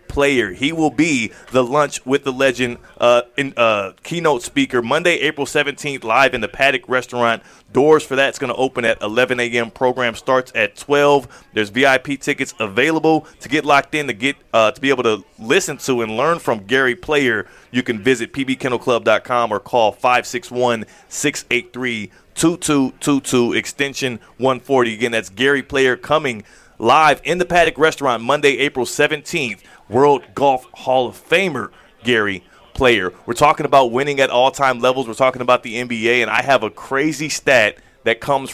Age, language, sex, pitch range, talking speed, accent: 30-49, English, male, 120-145 Hz, 165 wpm, American